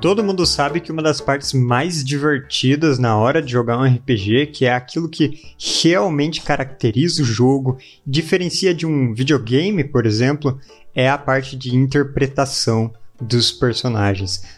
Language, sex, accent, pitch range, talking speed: Portuguese, male, Brazilian, 125-155 Hz, 150 wpm